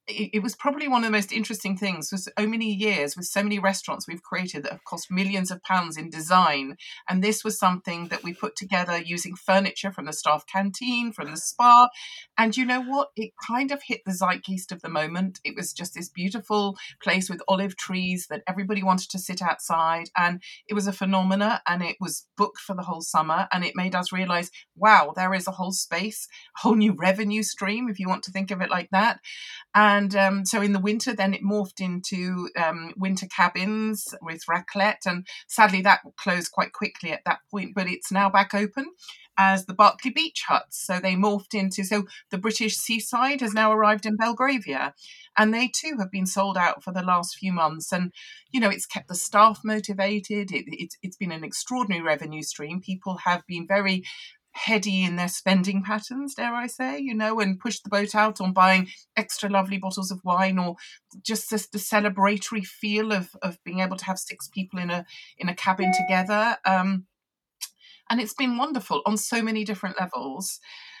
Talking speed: 205 wpm